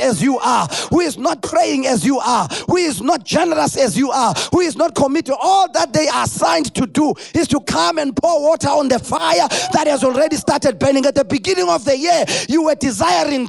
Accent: South African